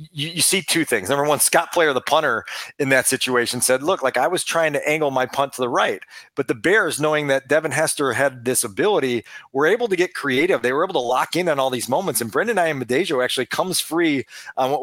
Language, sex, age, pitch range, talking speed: English, male, 40-59, 140-185 Hz, 255 wpm